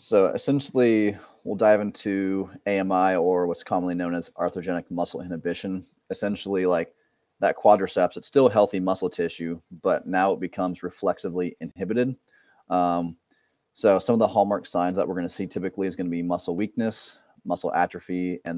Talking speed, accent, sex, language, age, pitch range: 165 wpm, American, male, English, 30-49, 85-95 Hz